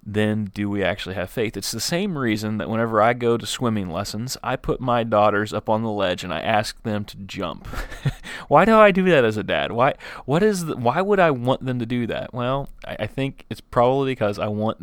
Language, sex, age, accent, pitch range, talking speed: English, male, 30-49, American, 105-125 Hz, 245 wpm